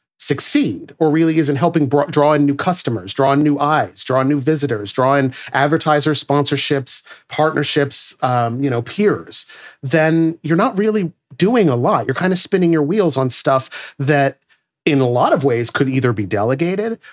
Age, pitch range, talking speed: 40-59, 125-160 Hz, 180 wpm